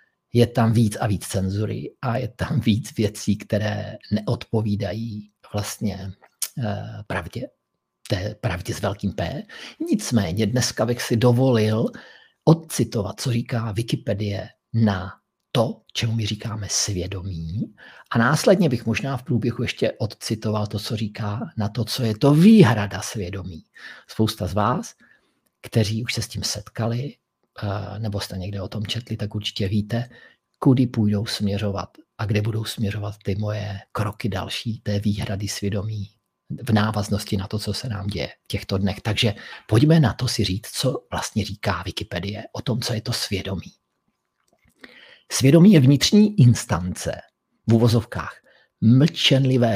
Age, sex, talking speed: 50-69, male, 145 wpm